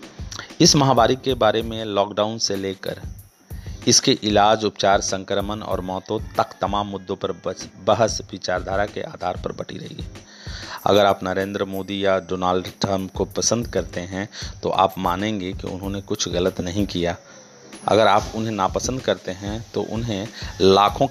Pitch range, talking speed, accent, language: 95-110 Hz, 155 wpm, native, Hindi